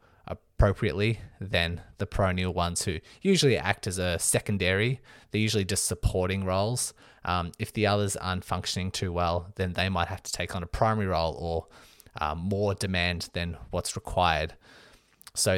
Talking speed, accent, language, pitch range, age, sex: 160 wpm, Australian, English, 90-110 Hz, 20-39, male